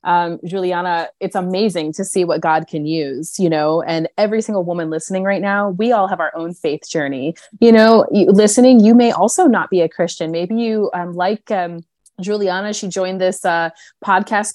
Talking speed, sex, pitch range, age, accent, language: 195 wpm, female, 170-215 Hz, 20-39, American, English